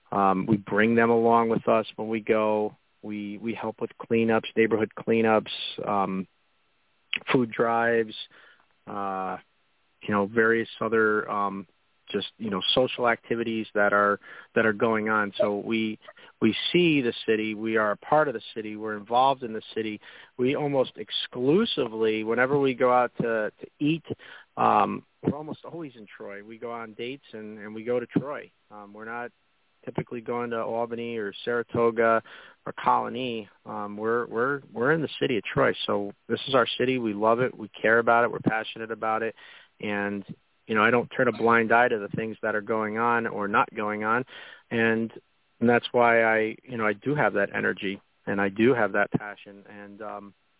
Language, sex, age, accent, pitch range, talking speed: English, male, 40-59, American, 105-120 Hz, 185 wpm